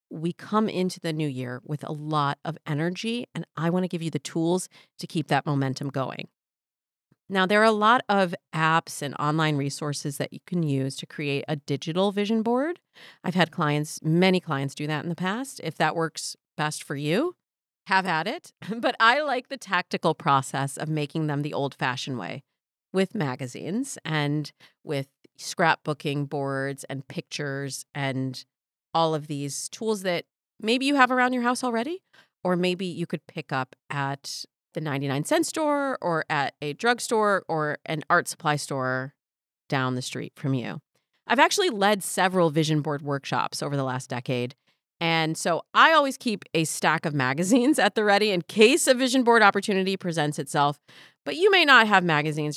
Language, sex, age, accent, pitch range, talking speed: English, female, 40-59, American, 145-195 Hz, 180 wpm